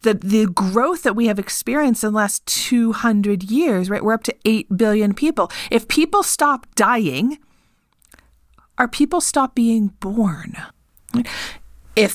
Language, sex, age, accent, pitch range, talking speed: English, female, 30-49, American, 180-240 Hz, 150 wpm